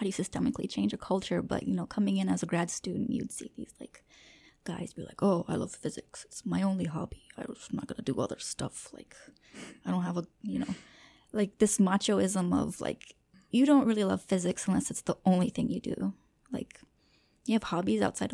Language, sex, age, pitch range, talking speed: English, female, 20-39, 185-255 Hz, 215 wpm